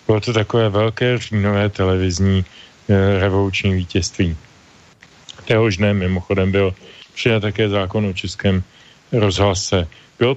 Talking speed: 115 wpm